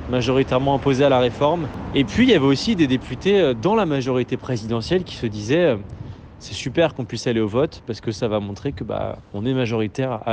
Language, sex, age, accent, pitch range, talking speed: French, male, 20-39, French, 115-155 Hz, 220 wpm